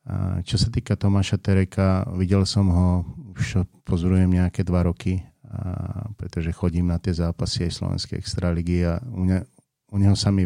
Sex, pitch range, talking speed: male, 90-100 Hz, 170 wpm